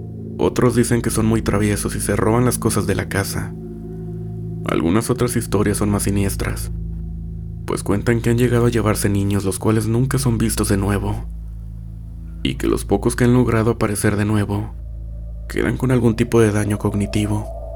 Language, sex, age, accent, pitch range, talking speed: Spanish, male, 30-49, Mexican, 100-115 Hz, 175 wpm